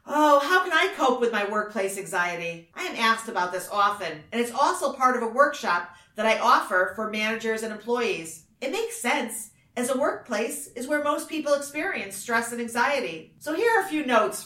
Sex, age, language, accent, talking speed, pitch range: female, 40-59, English, American, 205 wpm, 190-275 Hz